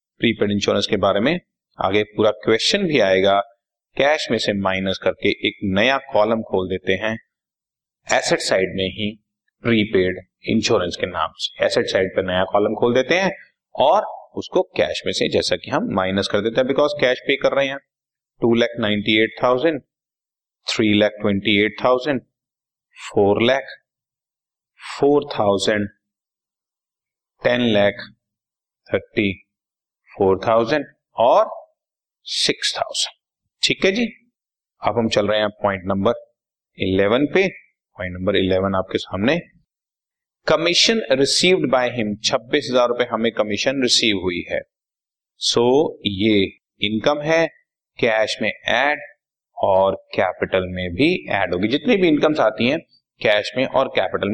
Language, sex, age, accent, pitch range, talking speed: Hindi, male, 30-49, native, 100-140 Hz, 125 wpm